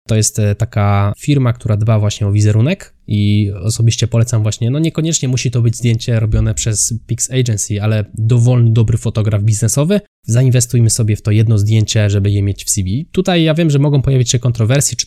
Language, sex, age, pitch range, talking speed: Polish, male, 20-39, 110-130 Hz, 190 wpm